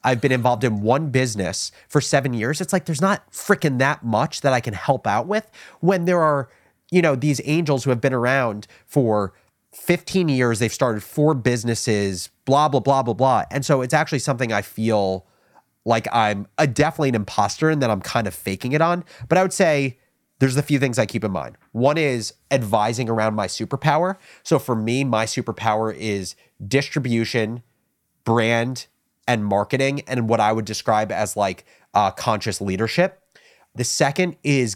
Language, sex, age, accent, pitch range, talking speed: English, male, 30-49, American, 110-140 Hz, 185 wpm